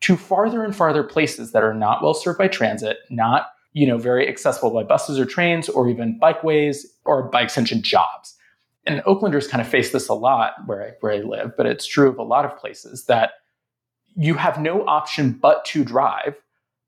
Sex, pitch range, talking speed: male, 125-190 Hz, 205 wpm